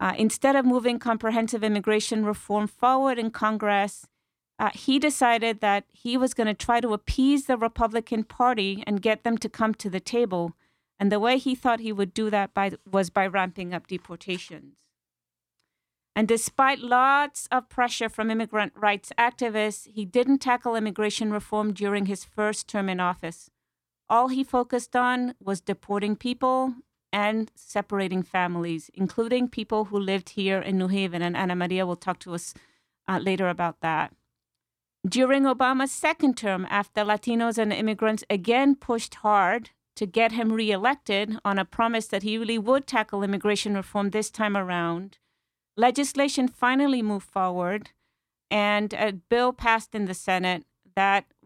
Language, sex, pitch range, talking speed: English, female, 195-240 Hz, 155 wpm